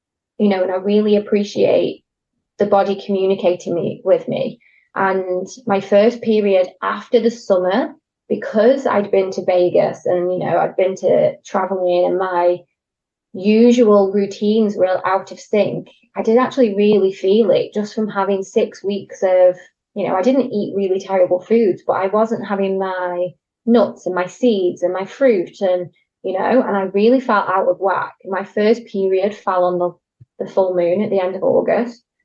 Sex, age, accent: female, 20-39, British